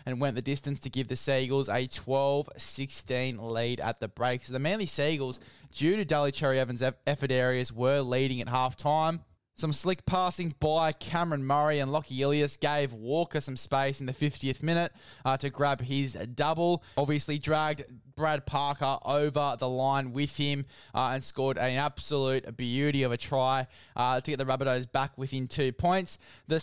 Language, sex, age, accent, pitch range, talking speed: English, male, 20-39, Australian, 130-155 Hz, 180 wpm